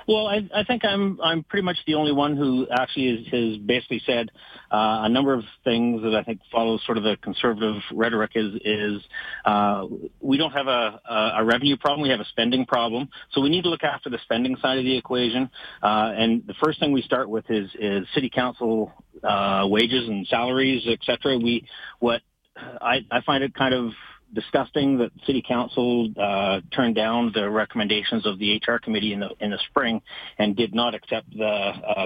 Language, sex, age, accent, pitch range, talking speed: English, male, 40-59, American, 110-135 Hz, 200 wpm